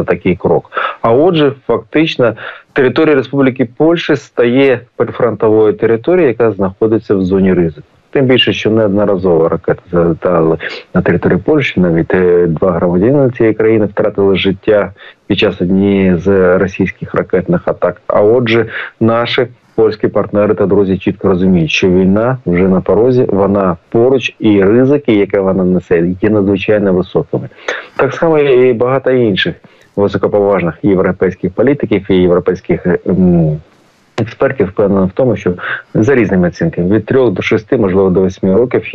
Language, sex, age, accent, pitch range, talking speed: Ukrainian, male, 30-49, native, 95-115 Hz, 135 wpm